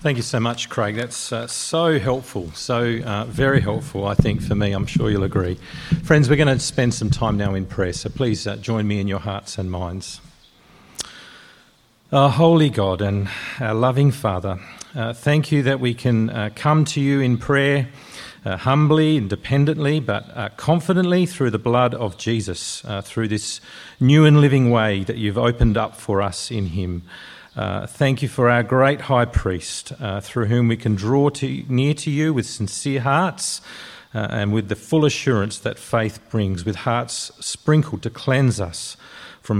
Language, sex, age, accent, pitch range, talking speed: English, male, 40-59, Australian, 105-140 Hz, 185 wpm